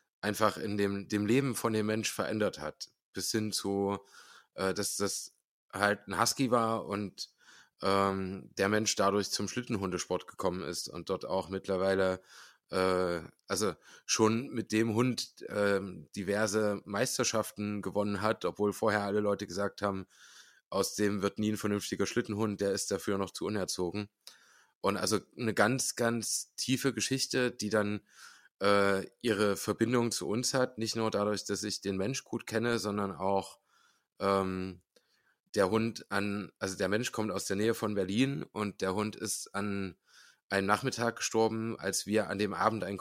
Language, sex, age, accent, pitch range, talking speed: German, male, 20-39, German, 100-110 Hz, 160 wpm